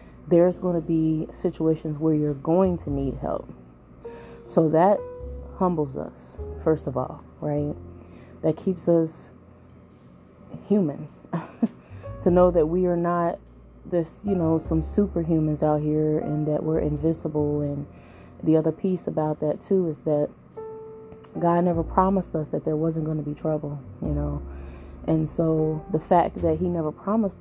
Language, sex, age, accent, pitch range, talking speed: English, female, 20-39, American, 150-170 Hz, 155 wpm